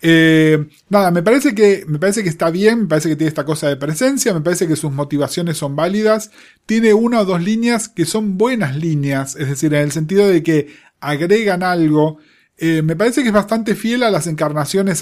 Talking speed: 210 wpm